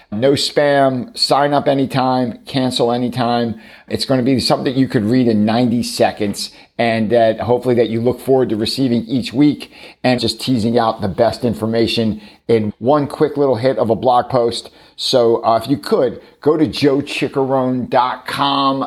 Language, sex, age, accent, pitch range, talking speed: English, male, 50-69, American, 110-130 Hz, 170 wpm